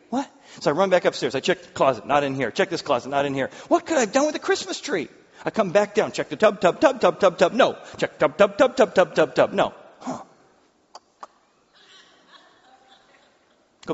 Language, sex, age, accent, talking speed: English, male, 40-59, American, 225 wpm